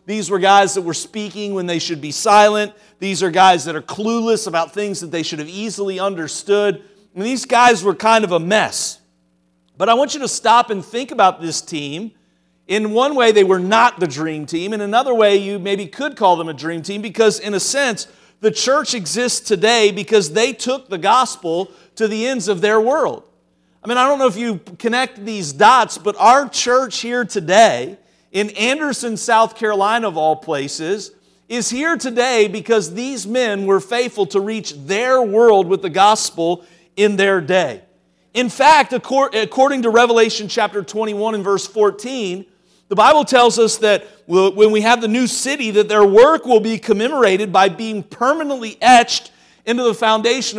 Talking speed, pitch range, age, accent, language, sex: 185 wpm, 195-235 Hz, 40-59, American, English, male